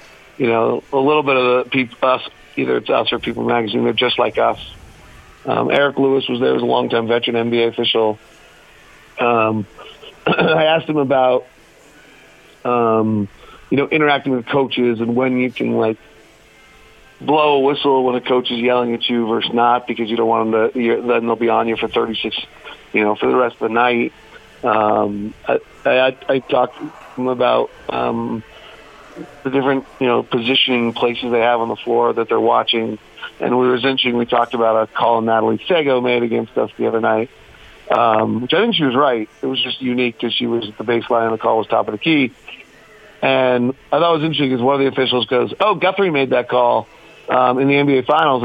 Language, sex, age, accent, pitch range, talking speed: English, male, 40-59, American, 115-135 Hz, 205 wpm